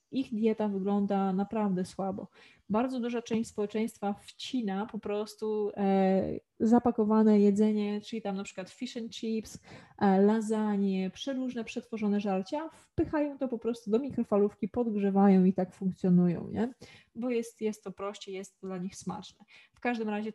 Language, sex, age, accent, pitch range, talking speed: Polish, female, 20-39, native, 195-230 Hz, 145 wpm